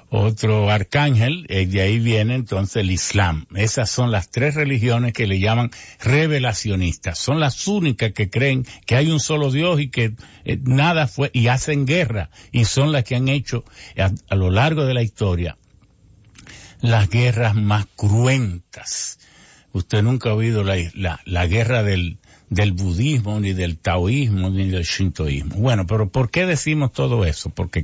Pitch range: 95-135 Hz